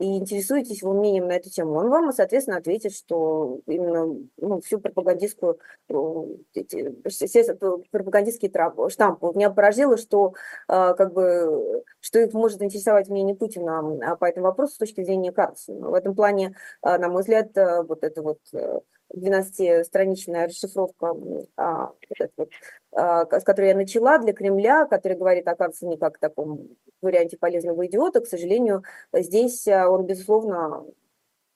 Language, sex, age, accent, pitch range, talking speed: Russian, female, 20-39, native, 180-240 Hz, 125 wpm